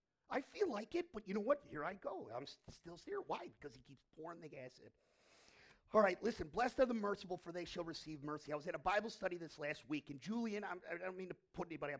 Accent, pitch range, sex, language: American, 150-220 Hz, male, English